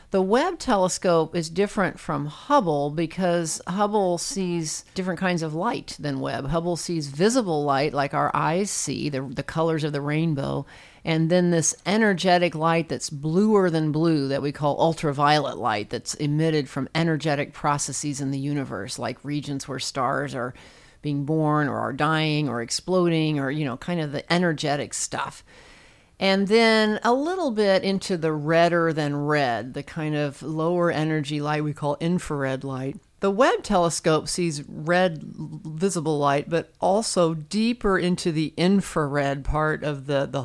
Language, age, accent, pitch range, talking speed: English, 40-59, American, 145-180 Hz, 160 wpm